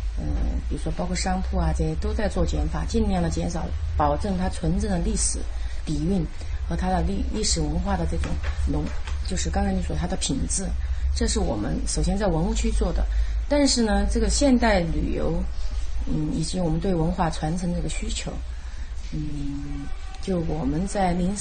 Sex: female